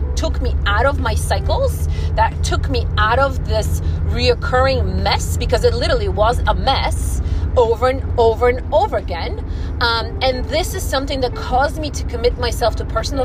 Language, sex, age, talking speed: English, female, 30-49, 175 wpm